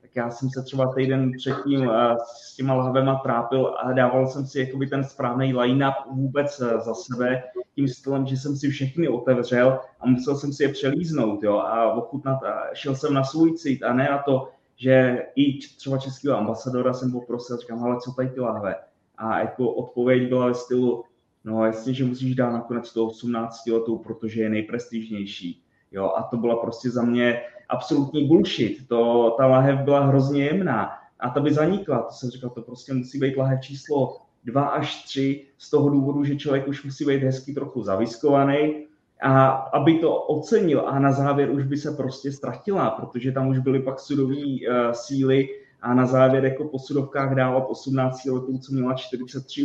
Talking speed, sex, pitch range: 180 wpm, male, 120-140 Hz